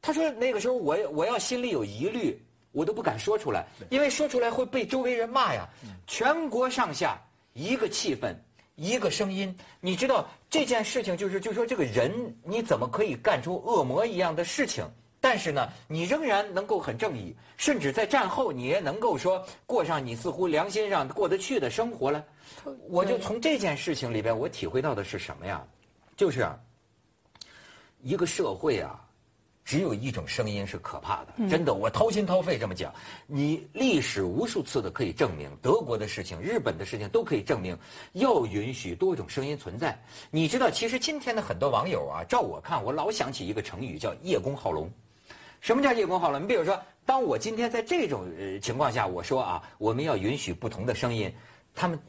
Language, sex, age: Chinese, male, 50-69